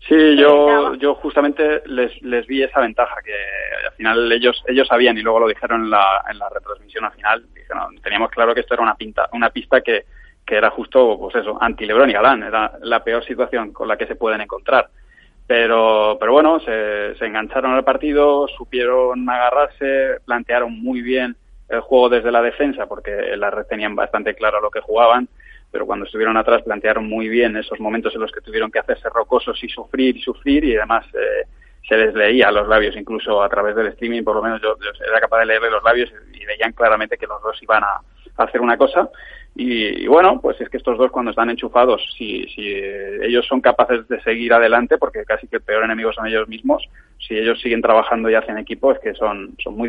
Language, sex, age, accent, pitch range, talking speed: Spanish, male, 20-39, Spanish, 115-145 Hz, 220 wpm